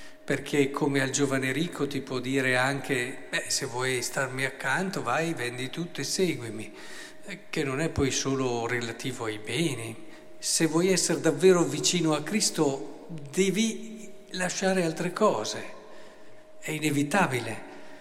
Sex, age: male, 50-69